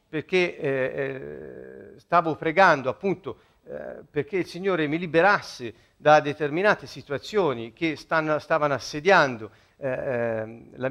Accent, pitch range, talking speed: native, 155-220 Hz, 110 wpm